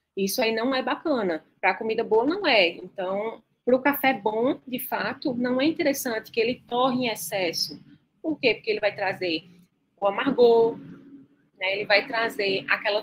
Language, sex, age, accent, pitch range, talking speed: Portuguese, female, 20-39, Brazilian, 205-265 Hz, 180 wpm